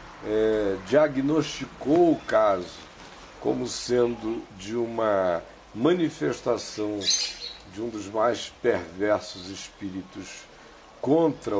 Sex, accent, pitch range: male, Brazilian, 105-140 Hz